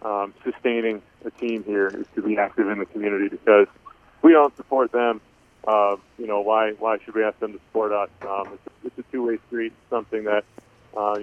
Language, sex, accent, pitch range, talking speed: English, male, American, 110-120 Hz, 215 wpm